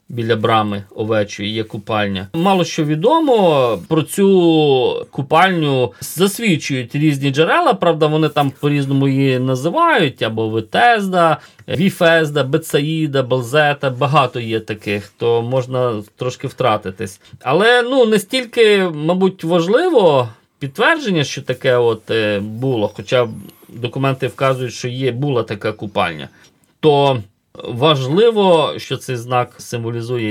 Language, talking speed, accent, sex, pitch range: Ukrainian, 115 wpm, native, male, 115-155 Hz